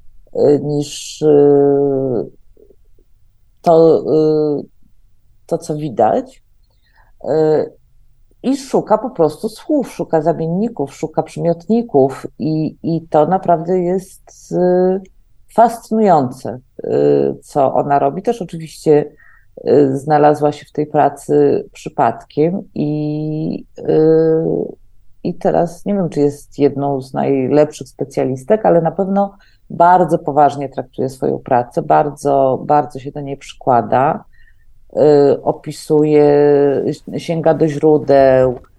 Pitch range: 140-185 Hz